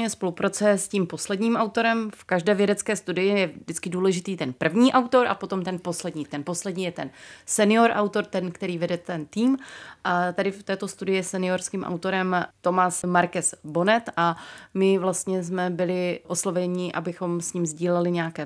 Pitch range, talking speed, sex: 170-200 Hz, 170 wpm, female